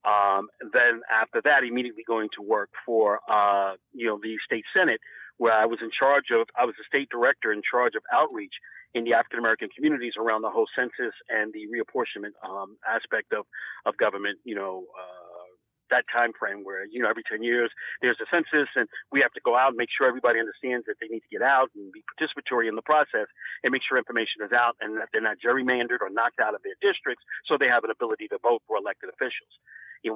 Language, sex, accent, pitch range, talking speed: English, male, American, 110-150 Hz, 225 wpm